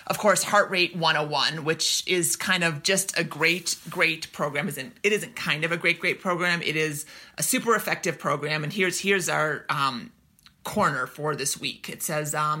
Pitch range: 150-185 Hz